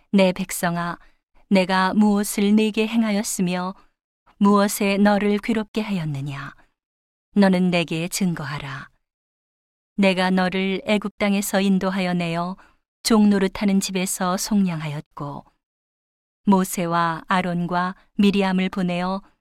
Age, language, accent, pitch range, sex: 40-59, Korean, native, 175-205 Hz, female